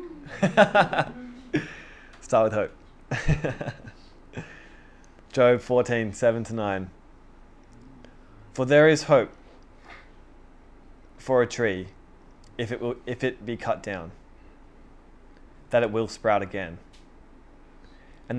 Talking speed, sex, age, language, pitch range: 90 wpm, male, 20-39, English, 100-125 Hz